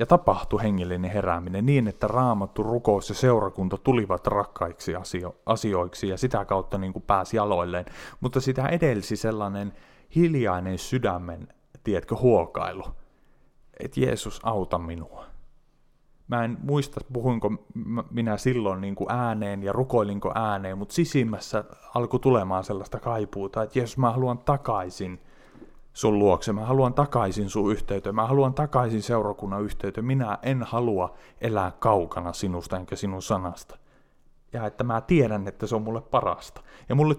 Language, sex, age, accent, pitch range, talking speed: Finnish, male, 30-49, native, 95-125 Hz, 140 wpm